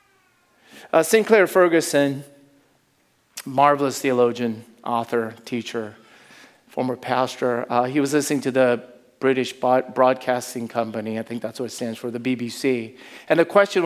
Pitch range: 125-165 Hz